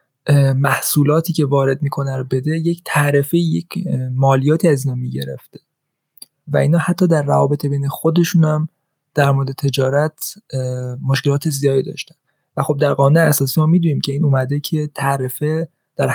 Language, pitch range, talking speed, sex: Persian, 140-160 Hz, 145 wpm, male